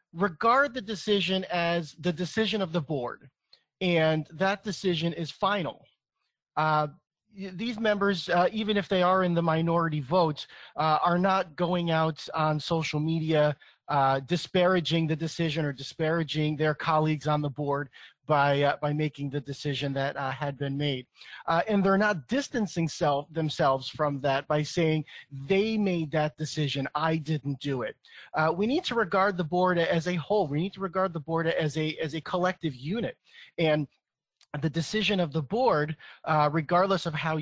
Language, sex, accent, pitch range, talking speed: English, male, American, 145-180 Hz, 170 wpm